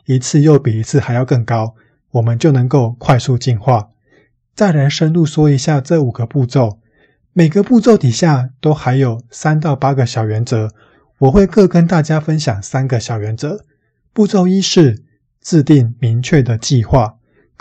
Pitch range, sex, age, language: 120-155 Hz, male, 20-39, Chinese